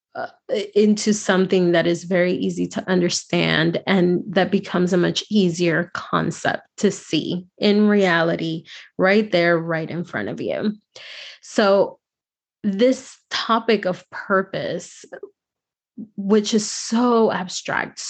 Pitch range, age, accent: 175-215 Hz, 20-39, American